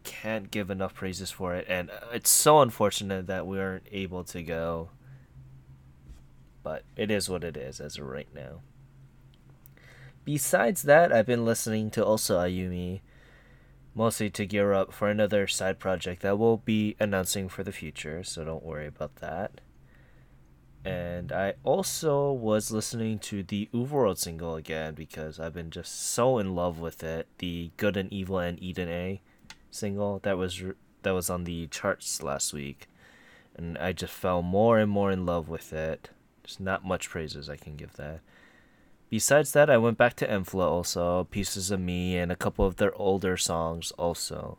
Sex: male